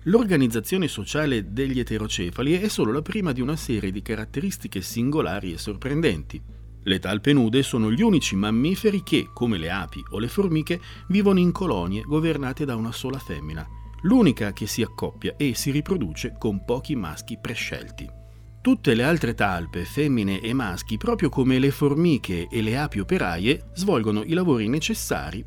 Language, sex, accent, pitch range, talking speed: Italian, male, native, 105-160 Hz, 160 wpm